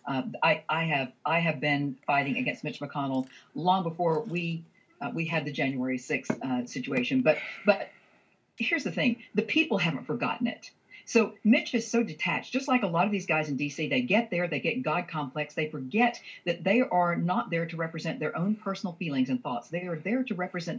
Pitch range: 145-205 Hz